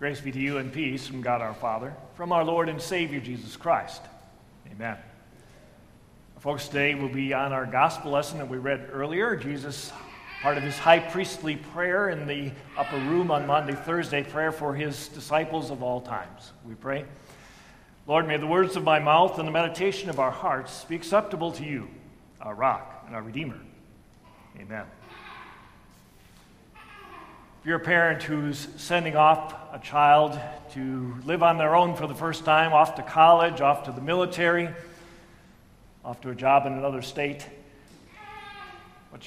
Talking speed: 165 wpm